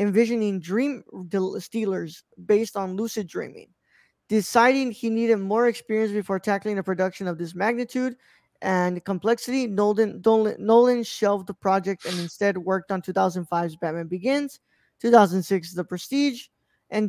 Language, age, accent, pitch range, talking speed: English, 20-39, American, 185-225 Hz, 130 wpm